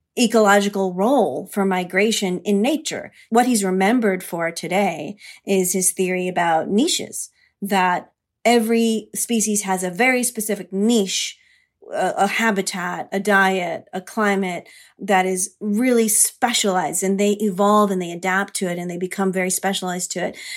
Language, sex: English, female